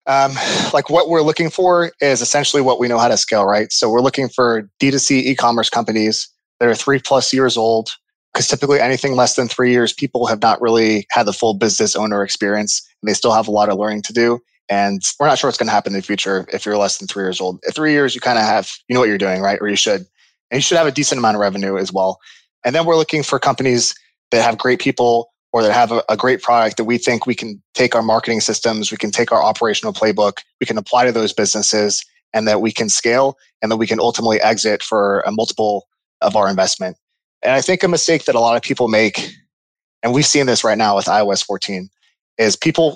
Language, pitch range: English, 105-135 Hz